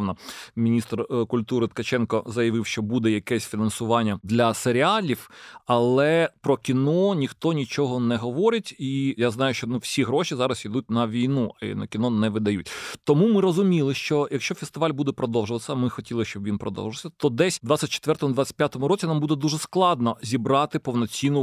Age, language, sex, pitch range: 30-49, Ukrainian, male, 120-160 Hz